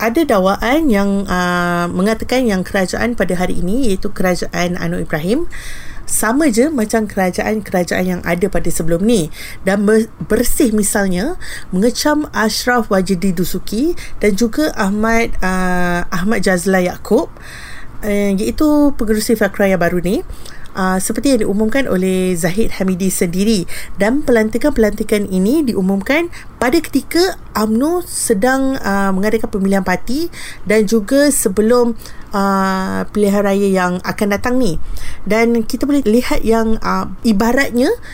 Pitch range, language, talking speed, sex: 195-240 Hz, Malay, 125 wpm, female